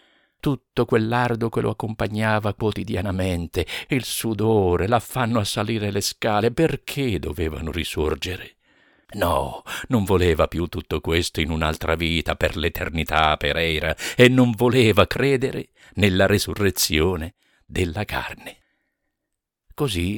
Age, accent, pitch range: 50-69, native, 85-120 Hz